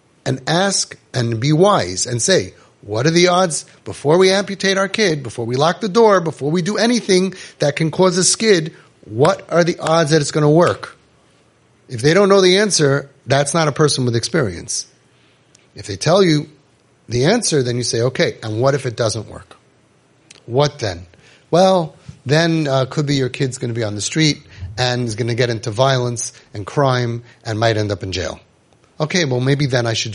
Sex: male